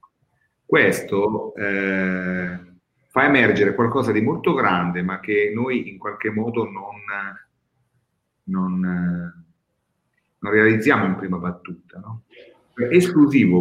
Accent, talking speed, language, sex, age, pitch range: native, 95 wpm, Italian, male, 40-59, 90-120 Hz